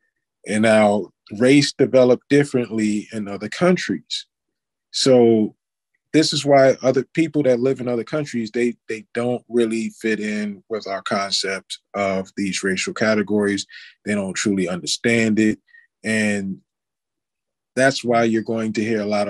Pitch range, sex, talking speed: 105-120 Hz, male, 145 wpm